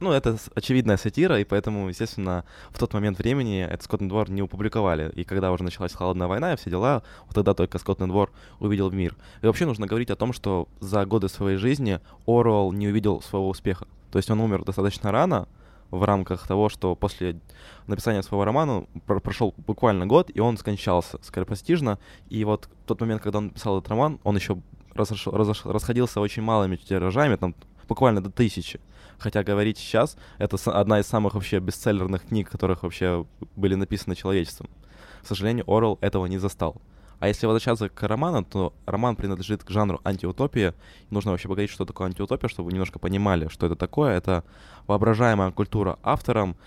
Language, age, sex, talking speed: Ukrainian, 20-39, male, 185 wpm